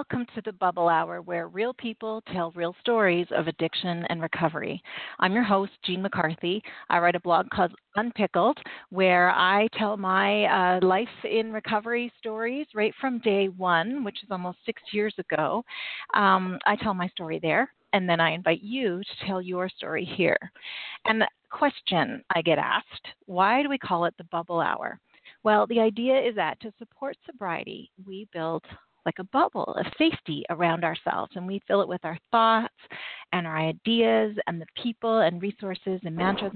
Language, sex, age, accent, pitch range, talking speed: English, female, 40-59, American, 180-230 Hz, 180 wpm